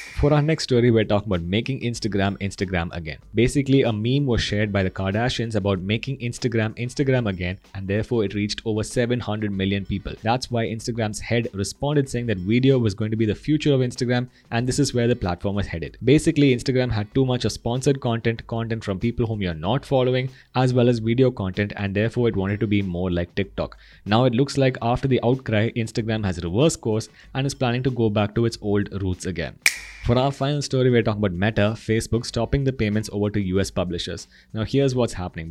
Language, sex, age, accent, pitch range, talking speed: English, male, 20-39, Indian, 100-125 Hz, 215 wpm